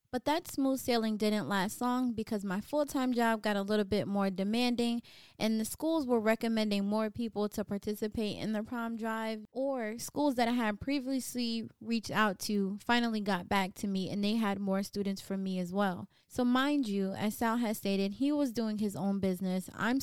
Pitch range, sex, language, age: 195-235 Hz, female, English, 20-39